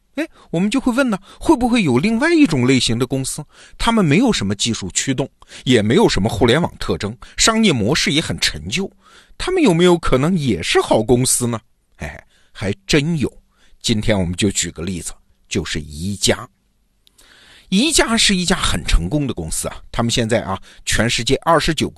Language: Chinese